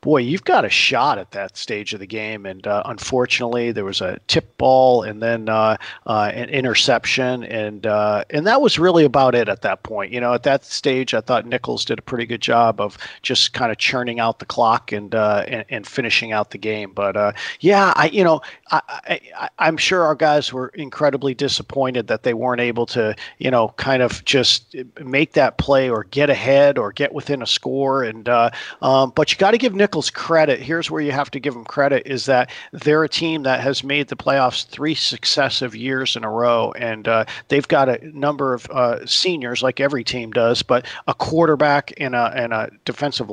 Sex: male